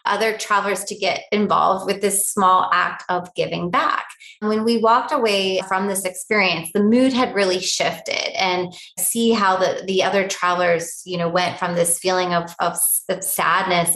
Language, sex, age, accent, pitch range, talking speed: English, female, 30-49, American, 180-225 Hz, 180 wpm